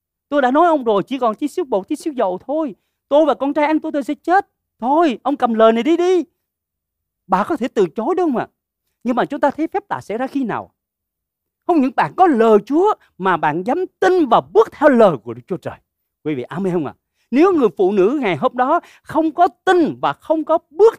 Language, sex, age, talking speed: Vietnamese, male, 40-59, 250 wpm